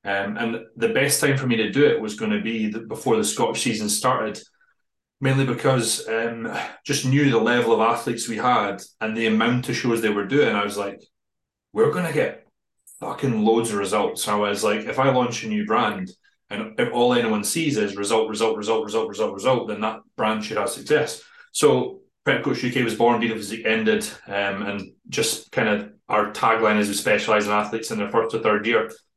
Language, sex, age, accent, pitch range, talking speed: English, male, 30-49, British, 105-140 Hz, 215 wpm